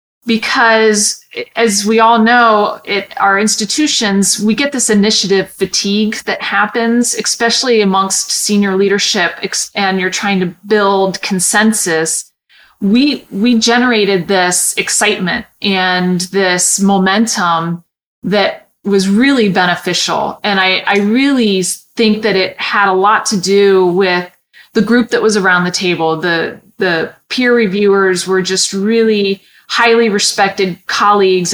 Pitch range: 185-220 Hz